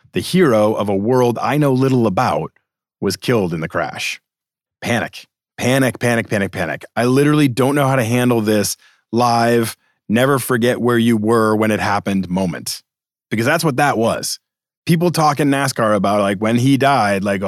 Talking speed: 180 wpm